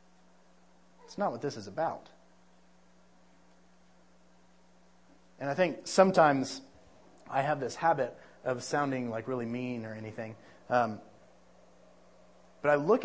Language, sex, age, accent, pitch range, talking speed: English, male, 30-49, American, 110-145 Hz, 115 wpm